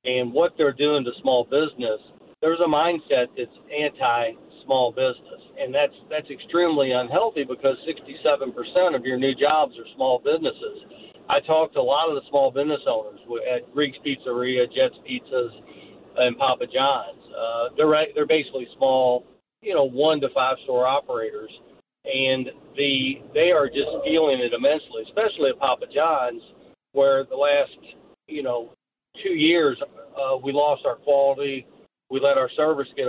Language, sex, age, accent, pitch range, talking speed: English, male, 50-69, American, 130-155 Hz, 155 wpm